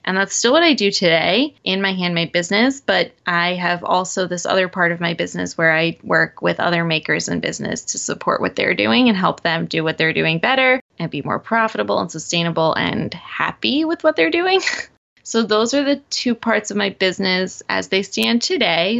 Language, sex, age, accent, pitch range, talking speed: English, female, 20-39, American, 175-215 Hz, 210 wpm